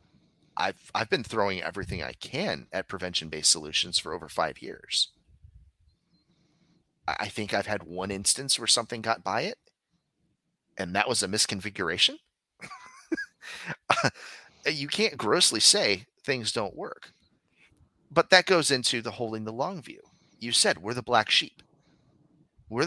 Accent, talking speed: American, 140 wpm